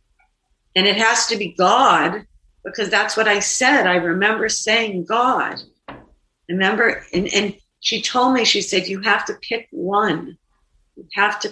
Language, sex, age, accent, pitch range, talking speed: English, female, 50-69, American, 170-230 Hz, 160 wpm